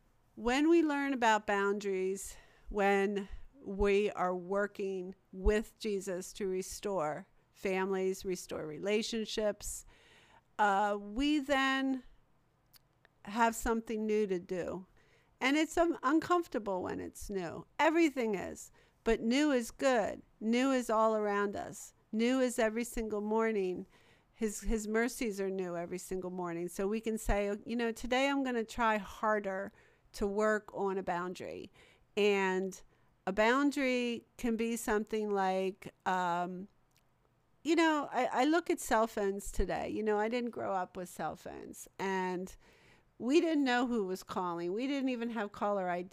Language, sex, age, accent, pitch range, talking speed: English, female, 50-69, American, 190-245 Hz, 145 wpm